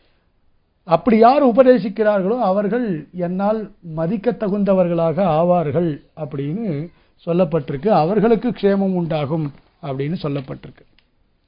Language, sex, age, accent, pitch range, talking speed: Tamil, male, 60-79, native, 170-225 Hz, 75 wpm